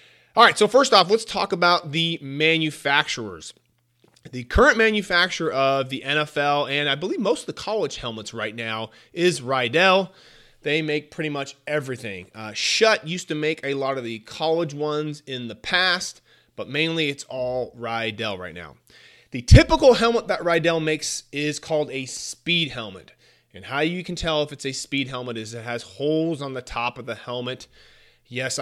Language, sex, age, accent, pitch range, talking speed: English, male, 30-49, American, 120-160 Hz, 180 wpm